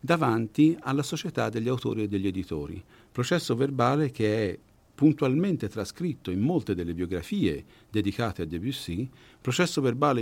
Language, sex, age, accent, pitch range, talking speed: Italian, male, 50-69, native, 90-130 Hz, 135 wpm